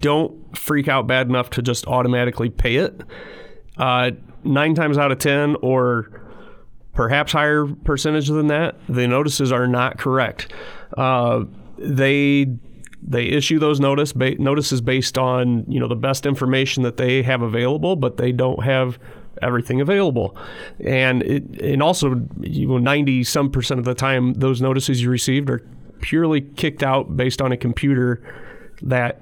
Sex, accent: male, American